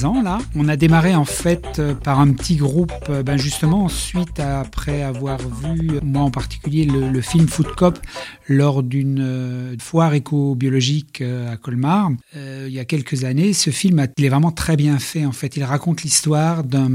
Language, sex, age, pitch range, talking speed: French, male, 40-59, 135-160 Hz, 190 wpm